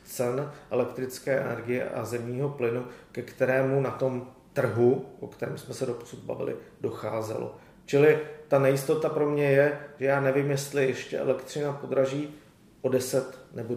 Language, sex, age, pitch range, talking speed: Czech, male, 40-59, 125-145 Hz, 150 wpm